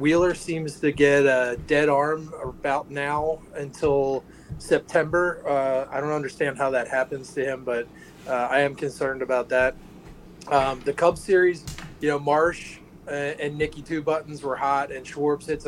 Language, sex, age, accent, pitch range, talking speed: English, male, 30-49, American, 135-165 Hz, 170 wpm